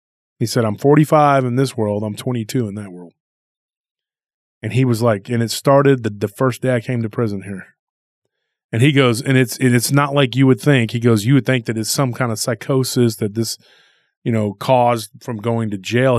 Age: 30-49